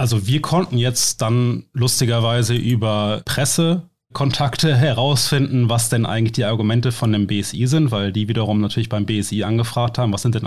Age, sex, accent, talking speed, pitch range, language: 30-49, male, German, 165 wpm, 110-135 Hz, German